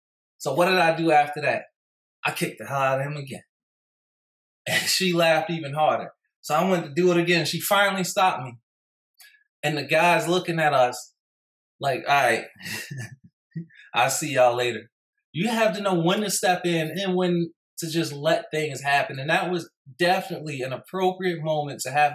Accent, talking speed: American, 185 wpm